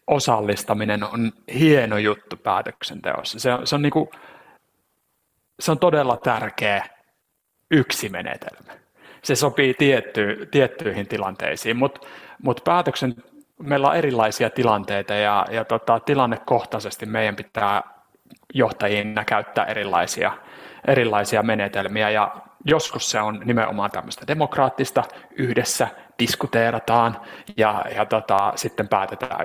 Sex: male